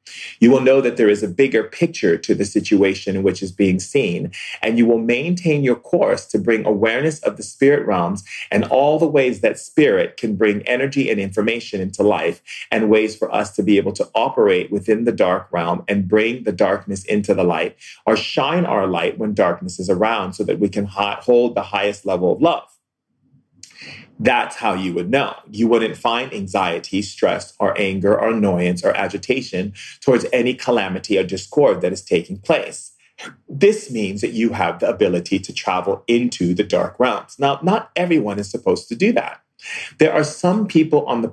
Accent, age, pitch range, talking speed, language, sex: American, 30-49, 100-140 Hz, 195 wpm, English, male